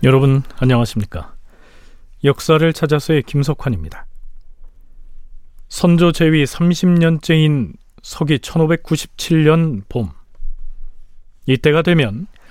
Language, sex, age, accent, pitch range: Korean, male, 40-59, native, 115-165 Hz